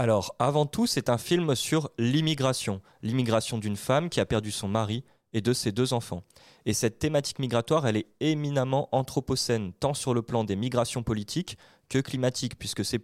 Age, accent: 20-39, French